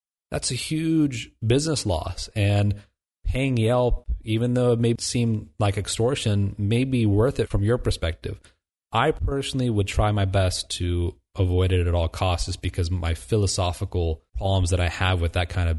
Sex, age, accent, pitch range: male, 30-49, American, 95-115 Hz